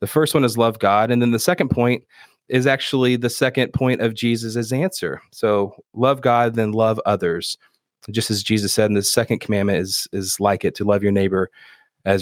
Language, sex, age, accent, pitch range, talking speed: English, male, 30-49, American, 100-120 Hz, 205 wpm